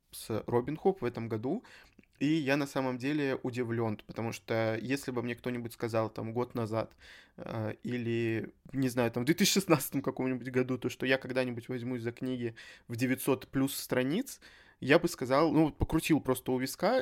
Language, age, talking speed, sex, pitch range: Russian, 20-39, 175 wpm, male, 120-145 Hz